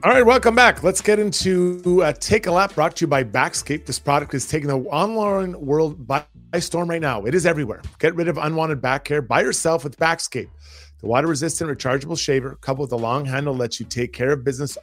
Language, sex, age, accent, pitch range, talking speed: English, male, 30-49, American, 120-165 Hz, 220 wpm